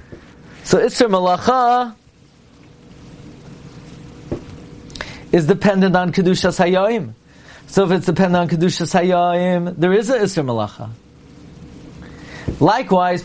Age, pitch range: 40-59, 160-200 Hz